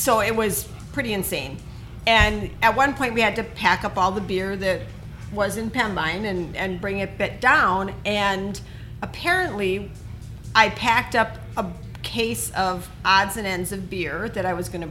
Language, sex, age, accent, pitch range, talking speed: English, female, 40-59, American, 175-210 Hz, 185 wpm